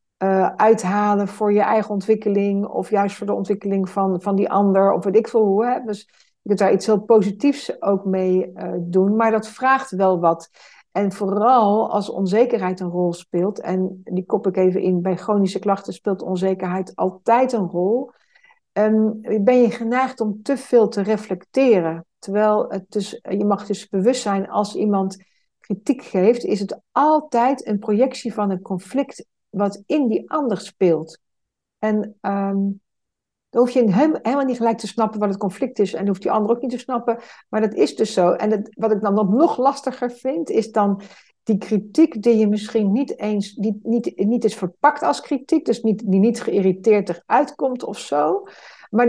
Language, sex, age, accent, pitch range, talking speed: Dutch, female, 60-79, Dutch, 195-235 Hz, 185 wpm